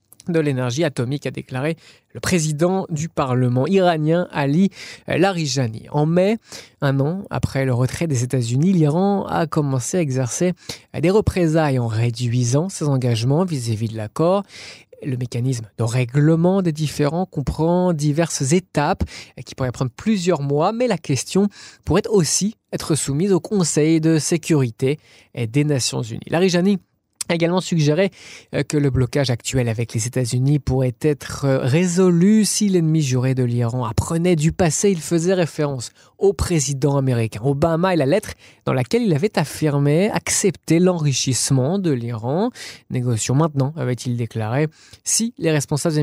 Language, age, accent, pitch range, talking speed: French, 20-39, French, 130-175 Hz, 145 wpm